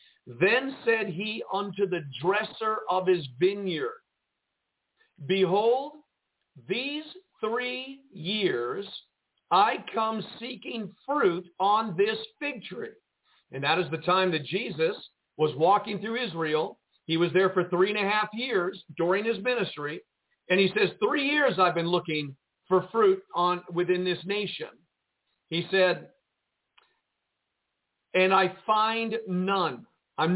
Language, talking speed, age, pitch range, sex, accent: English, 130 wpm, 50-69, 180-245 Hz, male, American